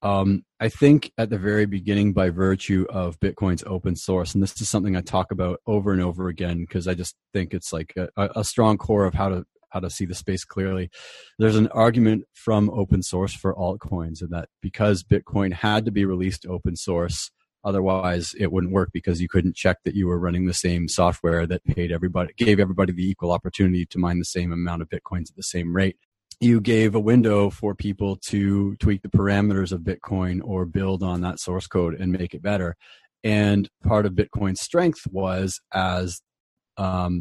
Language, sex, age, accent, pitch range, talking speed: English, male, 30-49, American, 90-105 Hz, 200 wpm